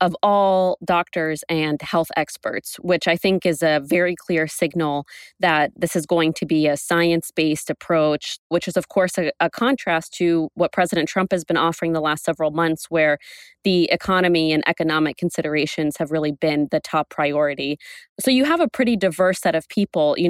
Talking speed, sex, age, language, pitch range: 185 wpm, female, 20-39, English, 155-180 Hz